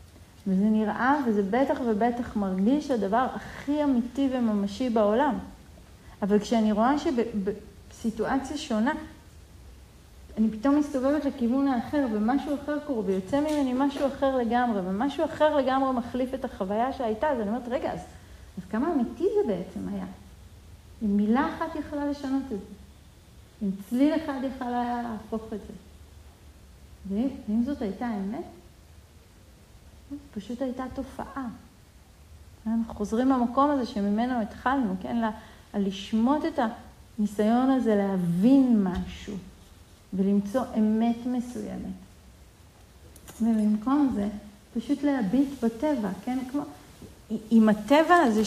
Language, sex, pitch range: Hebrew, female, 210-275 Hz